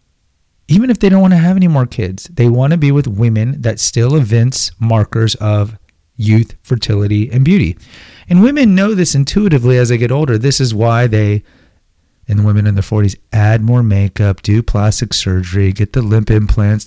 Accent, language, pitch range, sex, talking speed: American, English, 100-130 Hz, male, 190 wpm